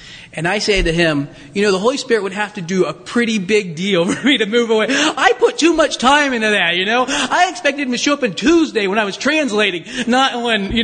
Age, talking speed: 30-49, 260 wpm